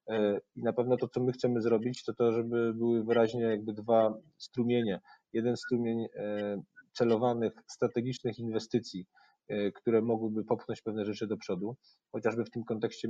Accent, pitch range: native, 105-120 Hz